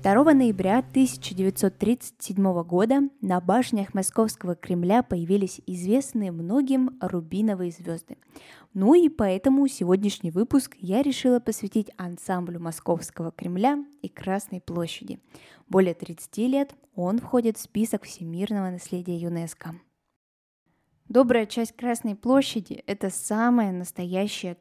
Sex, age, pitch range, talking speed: female, 10-29, 180-240 Hz, 105 wpm